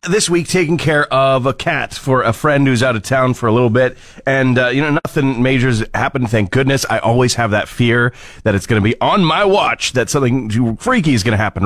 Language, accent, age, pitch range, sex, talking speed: English, American, 30-49, 110-145 Hz, male, 240 wpm